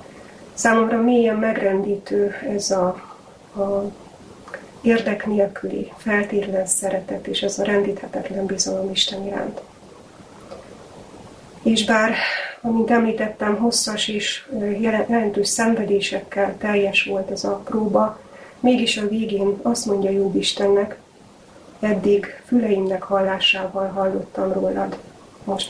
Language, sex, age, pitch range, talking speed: Hungarian, female, 30-49, 195-220 Hz, 100 wpm